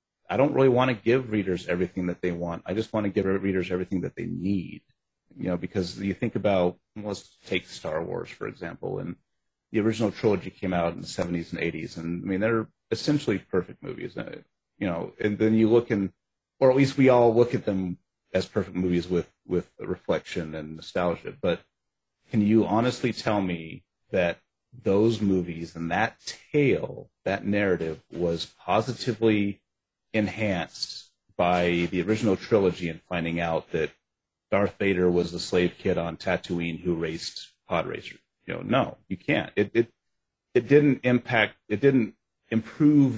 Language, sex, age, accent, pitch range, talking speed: English, male, 30-49, American, 85-110 Hz, 170 wpm